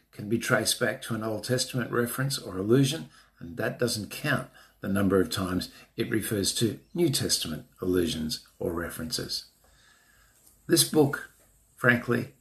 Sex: male